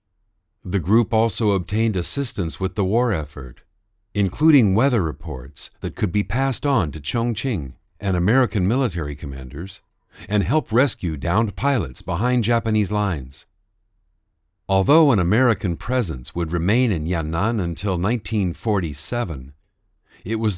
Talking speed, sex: 125 wpm, male